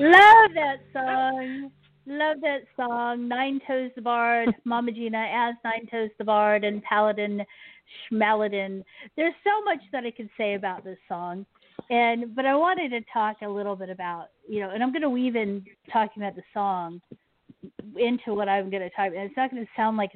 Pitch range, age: 195-245 Hz, 40-59